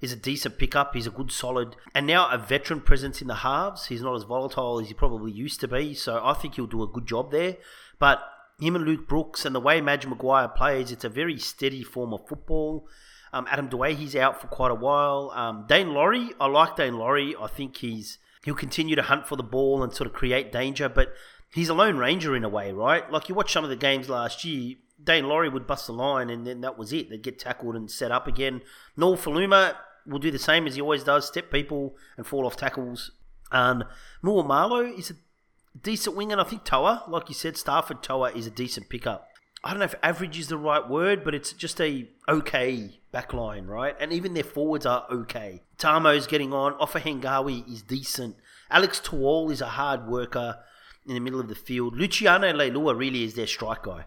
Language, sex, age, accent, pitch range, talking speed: English, male, 30-49, Australian, 125-155 Hz, 230 wpm